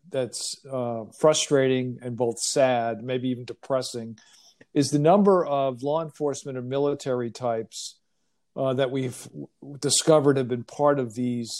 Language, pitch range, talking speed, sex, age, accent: English, 125-155 Hz, 140 wpm, male, 50-69, American